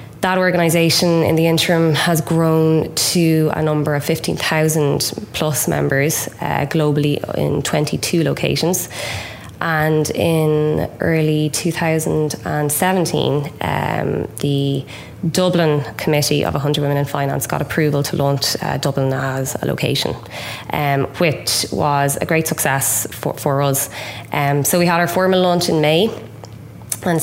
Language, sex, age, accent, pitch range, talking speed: English, female, 20-39, Irish, 140-165 Hz, 130 wpm